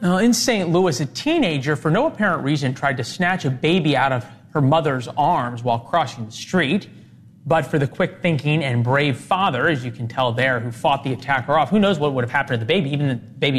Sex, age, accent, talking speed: male, 30-49, American, 235 wpm